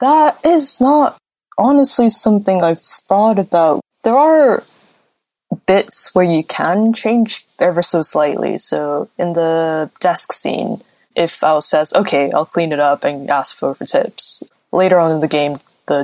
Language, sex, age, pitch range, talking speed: English, female, 10-29, 155-235 Hz, 155 wpm